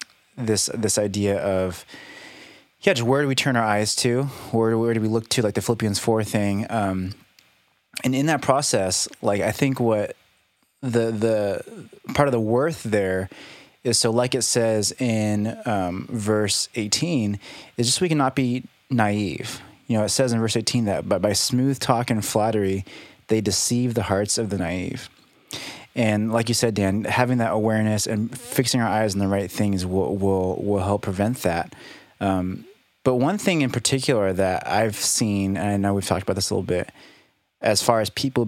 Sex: male